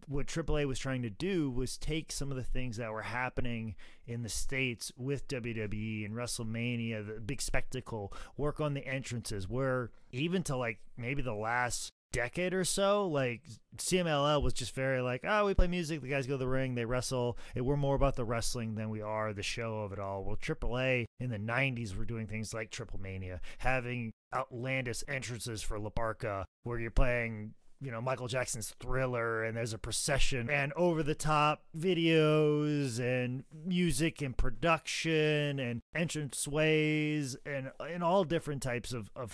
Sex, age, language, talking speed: male, 30-49, English, 175 wpm